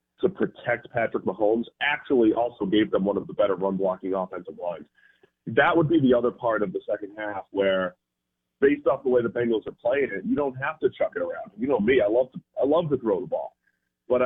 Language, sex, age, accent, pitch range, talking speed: English, male, 30-49, American, 95-140 Hz, 230 wpm